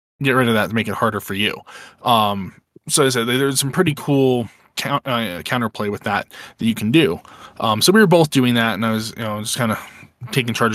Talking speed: 245 wpm